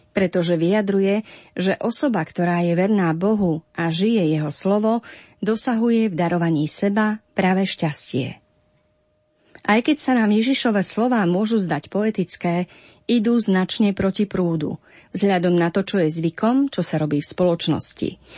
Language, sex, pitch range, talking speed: Slovak, female, 170-215 Hz, 135 wpm